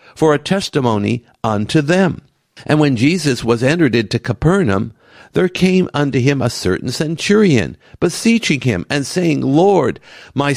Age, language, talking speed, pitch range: 60-79, English, 140 wpm, 130-175 Hz